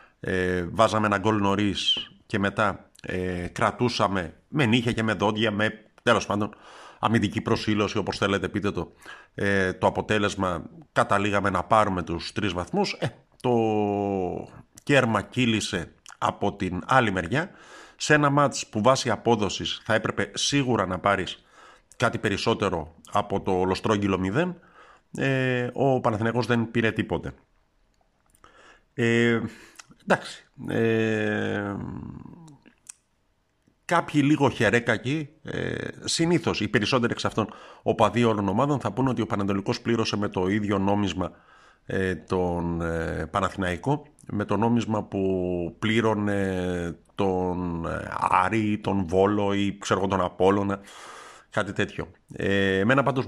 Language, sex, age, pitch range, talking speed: Greek, male, 50-69, 95-115 Hz, 120 wpm